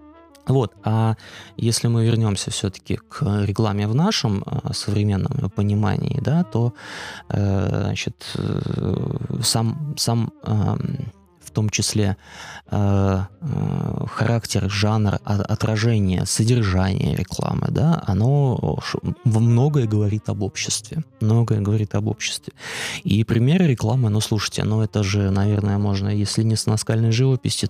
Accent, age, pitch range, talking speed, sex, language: native, 20-39, 100-120 Hz, 115 wpm, male, Russian